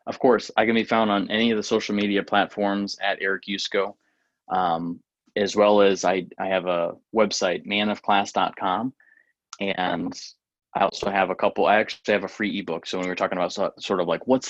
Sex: male